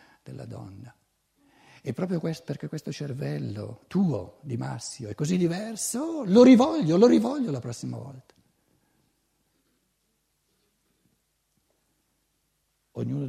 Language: Italian